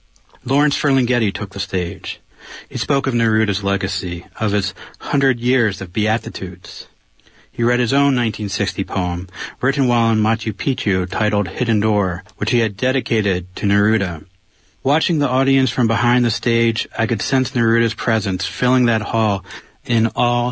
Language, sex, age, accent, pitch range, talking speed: English, male, 40-59, American, 105-120 Hz, 155 wpm